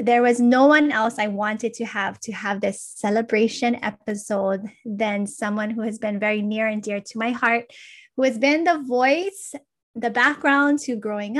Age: 20-39